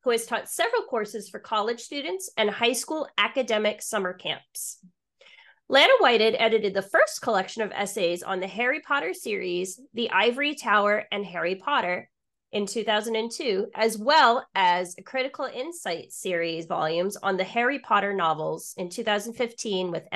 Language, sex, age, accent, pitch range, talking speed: English, female, 30-49, American, 195-265 Hz, 150 wpm